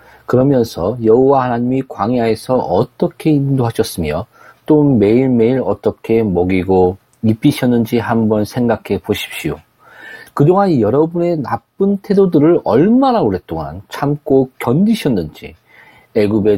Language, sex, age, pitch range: Korean, male, 40-59, 110-165 Hz